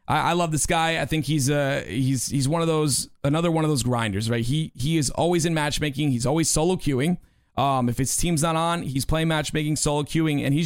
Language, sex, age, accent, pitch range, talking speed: English, male, 30-49, American, 125-160 Hz, 235 wpm